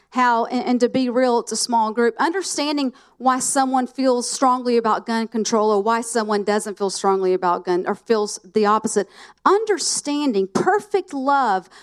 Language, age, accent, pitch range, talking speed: English, 40-59, American, 200-255 Hz, 165 wpm